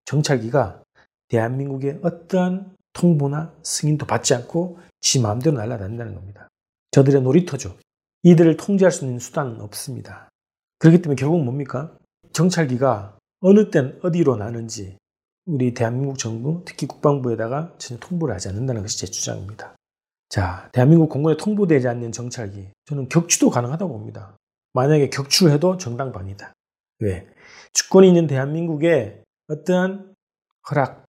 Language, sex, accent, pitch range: Korean, male, native, 120-165 Hz